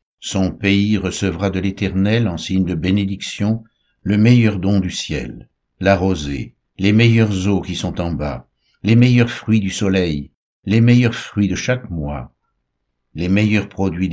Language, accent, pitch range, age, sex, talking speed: French, French, 85-105 Hz, 60-79, male, 155 wpm